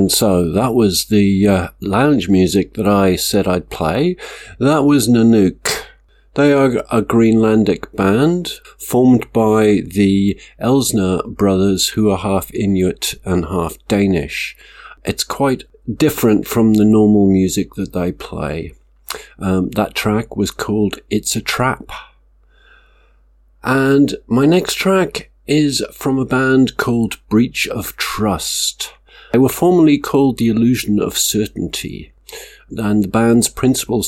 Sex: male